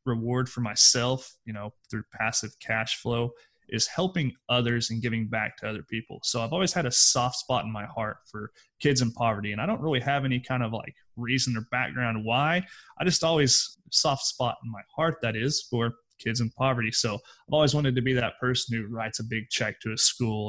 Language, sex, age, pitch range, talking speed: English, male, 20-39, 110-125 Hz, 220 wpm